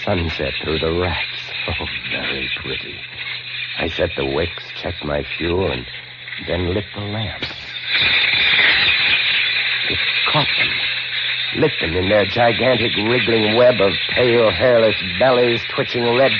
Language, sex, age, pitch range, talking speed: English, male, 60-79, 110-140 Hz, 130 wpm